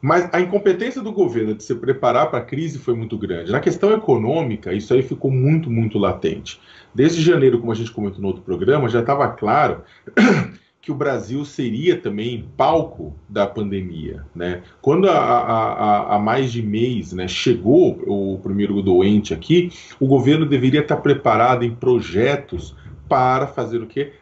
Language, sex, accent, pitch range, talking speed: Portuguese, male, Brazilian, 100-145 Hz, 165 wpm